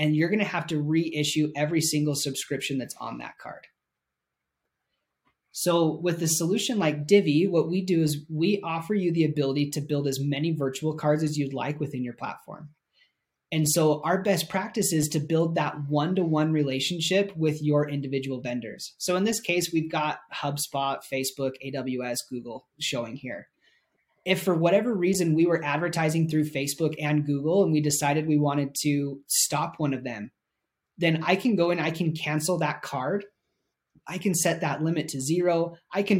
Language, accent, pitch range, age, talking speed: English, American, 145-170 Hz, 30-49, 180 wpm